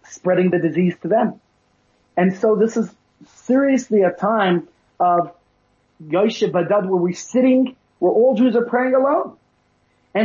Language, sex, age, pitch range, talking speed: English, male, 30-49, 170-215 Hz, 145 wpm